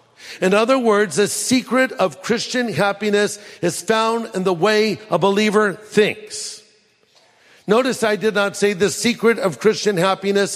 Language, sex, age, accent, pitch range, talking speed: English, male, 50-69, American, 175-215 Hz, 150 wpm